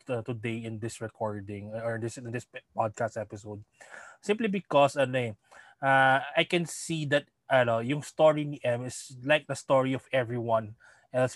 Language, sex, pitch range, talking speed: English, male, 120-150 Hz, 160 wpm